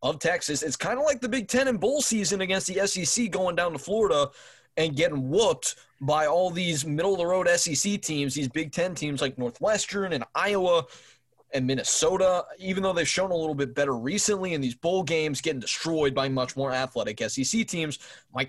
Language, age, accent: English, 20-39, American